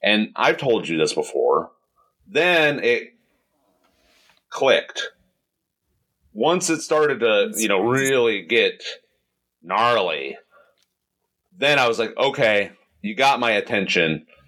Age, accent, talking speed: 30-49, American, 110 wpm